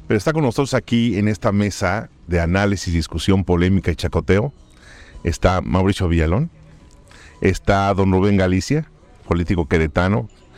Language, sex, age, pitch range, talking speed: Spanish, male, 40-59, 85-115 Hz, 130 wpm